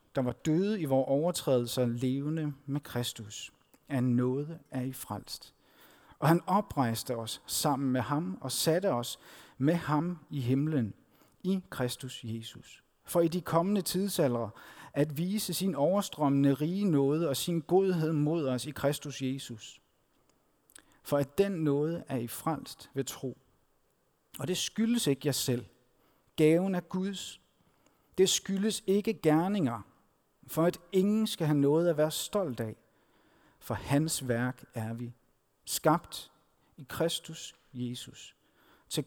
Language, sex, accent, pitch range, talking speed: Danish, male, native, 120-160 Hz, 140 wpm